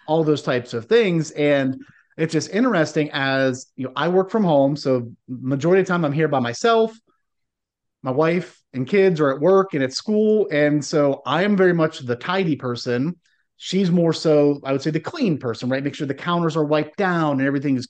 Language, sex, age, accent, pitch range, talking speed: English, male, 30-49, American, 130-170 Hz, 215 wpm